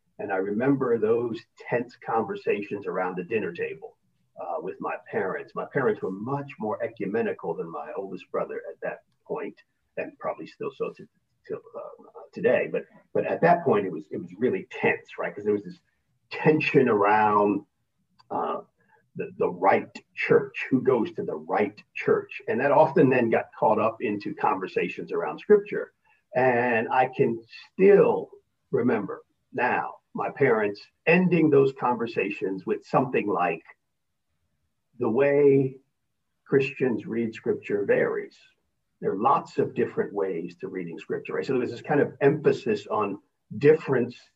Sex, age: male, 40-59